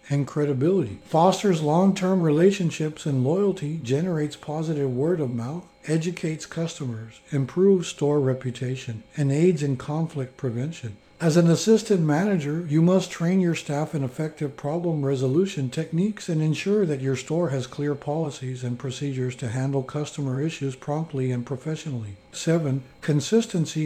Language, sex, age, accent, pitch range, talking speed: English, male, 60-79, American, 135-170 Hz, 140 wpm